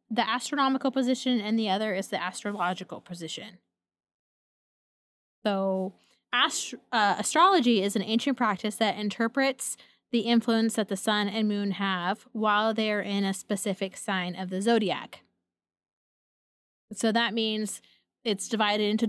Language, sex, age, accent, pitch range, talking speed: English, female, 20-39, American, 190-225 Hz, 135 wpm